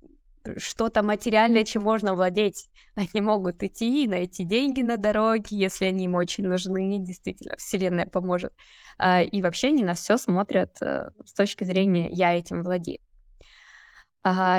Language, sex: Russian, female